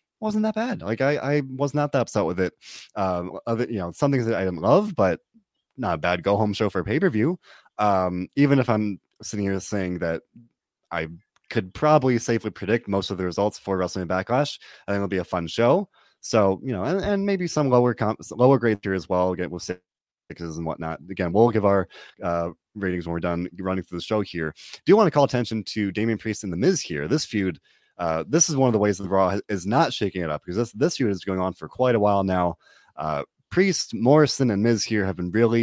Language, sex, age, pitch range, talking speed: English, male, 30-49, 90-120 Hz, 240 wpm